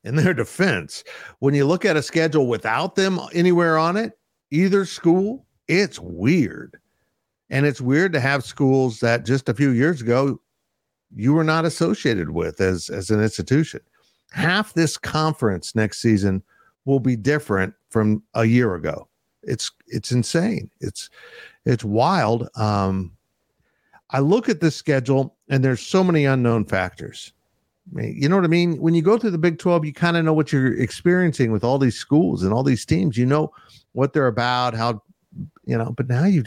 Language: English